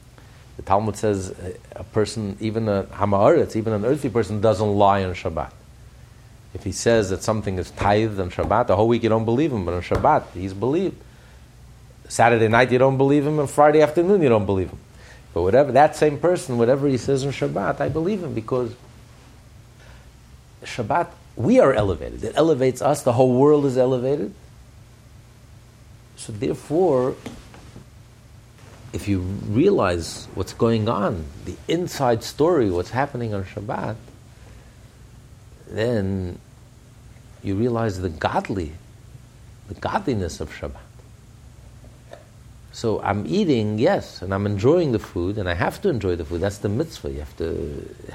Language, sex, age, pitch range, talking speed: English, male, 50-69, 100-120 Hz, 155 wpm